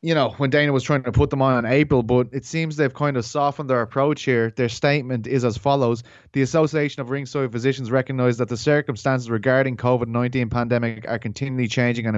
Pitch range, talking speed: 125-150 Hz, 215 wpm